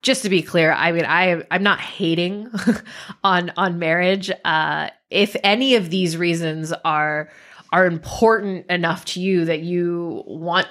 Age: 20-39